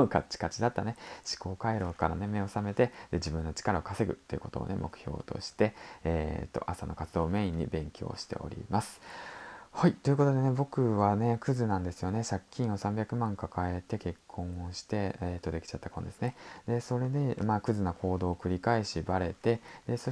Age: 20-39